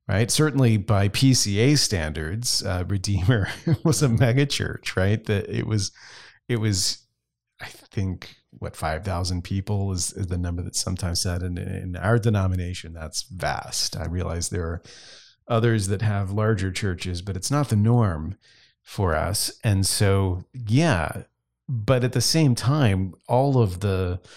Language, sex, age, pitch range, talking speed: English, male, 40-59, 90-115 Hz, 155 wpm